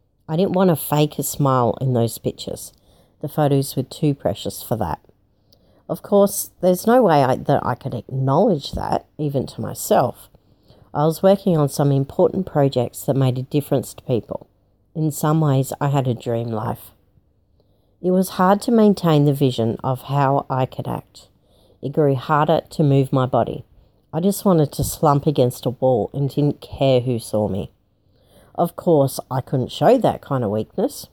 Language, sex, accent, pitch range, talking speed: English, female, Australian, 120-160 Hz, 180 wpm